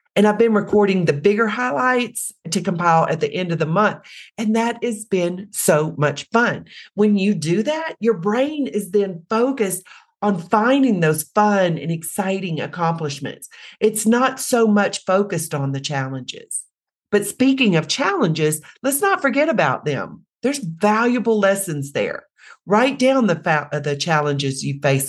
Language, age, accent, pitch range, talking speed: English, 40-59, American, 155-225 Hz, 165 wpm